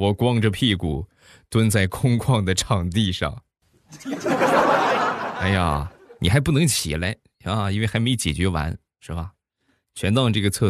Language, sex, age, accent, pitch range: Chinese, male, 20-39, native, 80-105 Hz